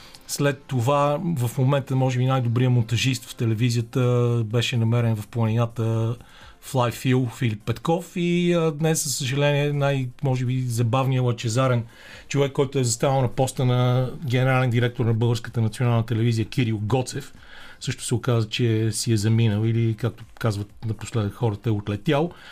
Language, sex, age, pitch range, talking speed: Bulgarian, male, 40-59, 120-145 Hz, 145 wpm